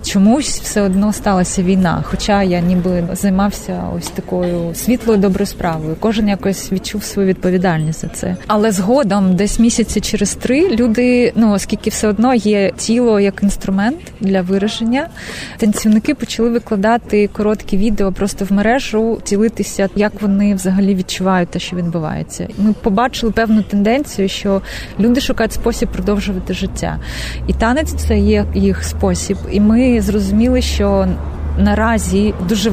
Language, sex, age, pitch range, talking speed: Ukrainian, female, 20-39, 195-230 Hz, 140 wpm